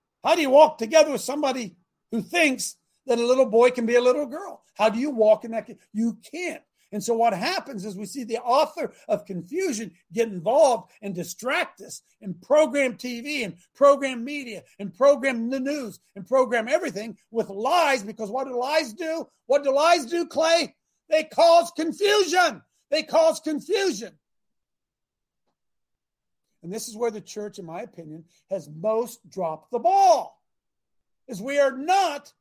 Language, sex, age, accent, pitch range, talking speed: English, male, 50-69, American, 225-320 Hz, 170 wpm